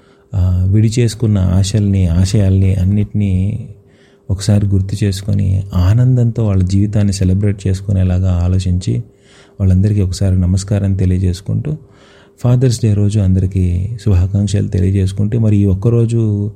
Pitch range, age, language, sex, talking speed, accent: 95-110 Hz, 30-49, Telugu, male, 100 wpm, native